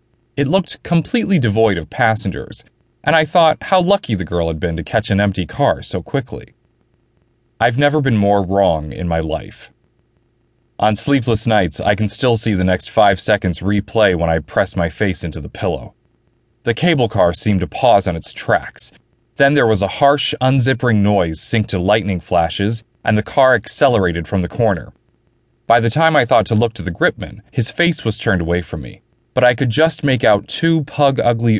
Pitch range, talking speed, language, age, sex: 95-120 Hz, 195 wpm, English, 30-49, male